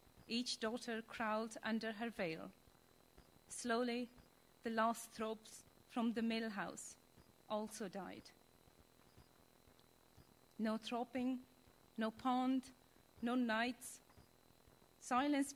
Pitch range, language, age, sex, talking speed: 215-255 Hz, English, 30-49, female, 90 wpm